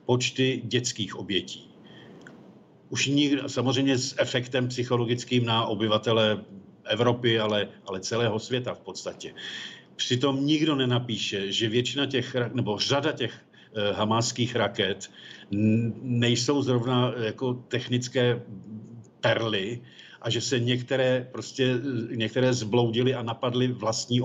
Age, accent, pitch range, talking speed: 50-69, native, 115-125 Hz, 110 wpm